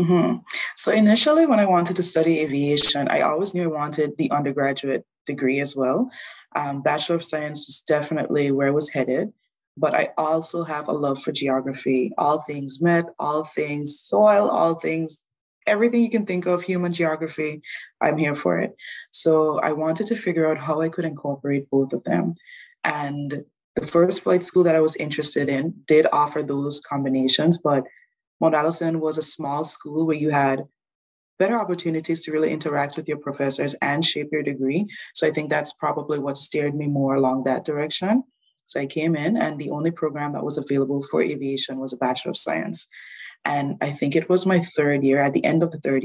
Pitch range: 140-165 Hz